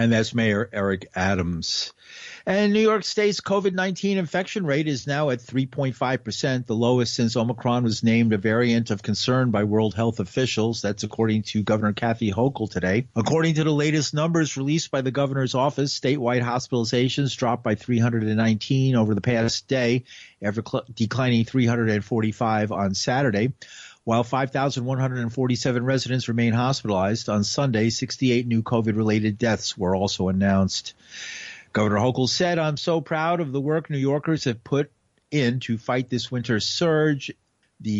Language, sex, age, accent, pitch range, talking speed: English, male, 50-69, American, 110-140 Hz, 150 wpm